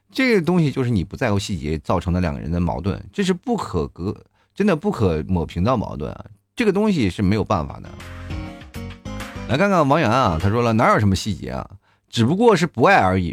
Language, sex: Chinese, male